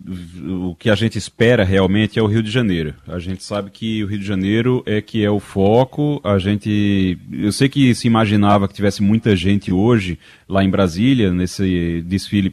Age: 30-49